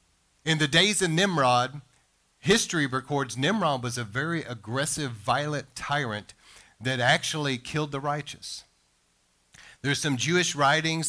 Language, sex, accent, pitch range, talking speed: English, male, American, 120-155 Hz, 125 wpm